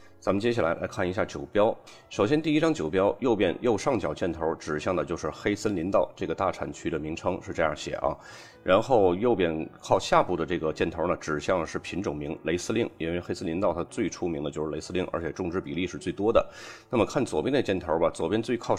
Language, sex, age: Chinese, male, 30-49